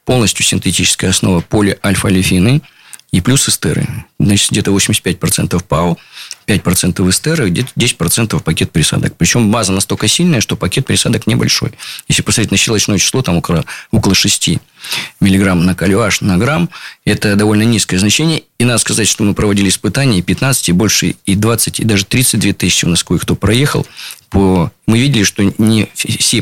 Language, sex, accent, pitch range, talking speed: Russian, male, native, 95-120 Hz, 155 wpm